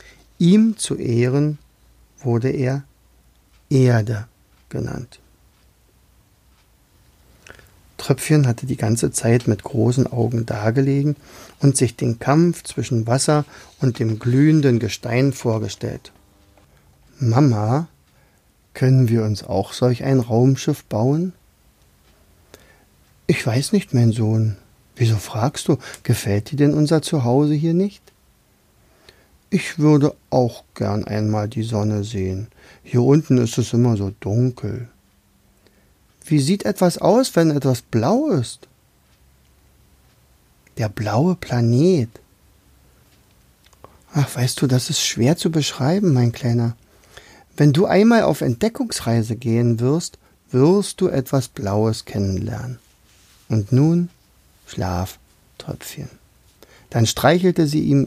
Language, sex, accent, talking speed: German, male, German, 110 wpm